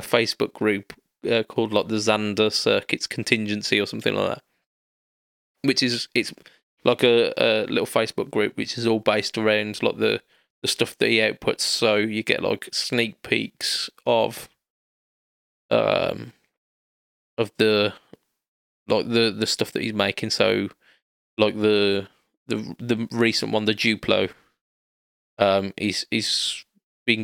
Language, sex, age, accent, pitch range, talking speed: English, male, 20-39, British, 100-110 Hz, 140 wpm